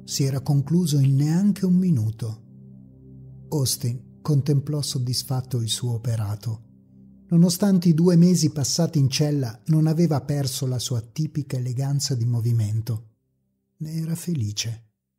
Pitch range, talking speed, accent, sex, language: 120-170 Hz, 125 wpm, native, male, Italian